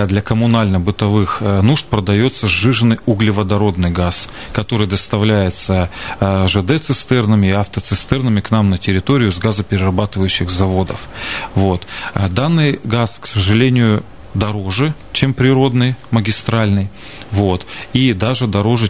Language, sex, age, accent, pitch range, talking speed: Russian, male, 30-49, native, 95-115 Hz, 100 wpm